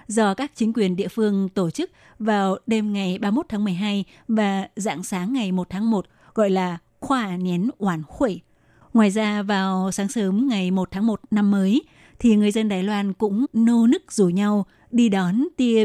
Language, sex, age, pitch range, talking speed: Vietnamese, female, 20-39, 190-220 Hz, 195 wpm